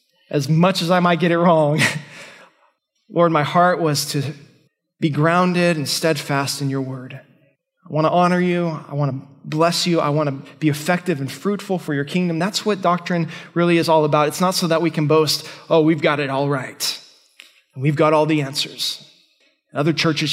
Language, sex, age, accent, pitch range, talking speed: English, male, 20-39, American, 150-175 Hz, 200 wpm